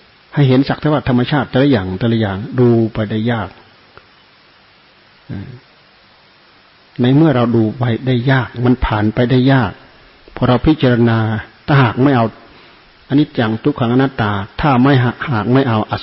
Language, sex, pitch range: Thai, male, 110-130 Hz